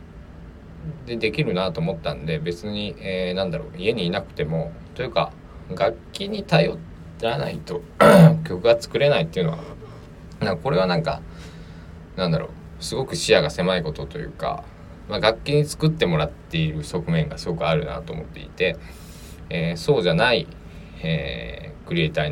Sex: male